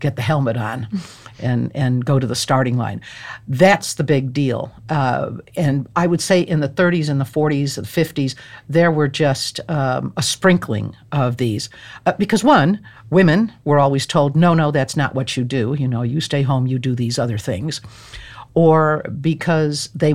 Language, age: English, 60-79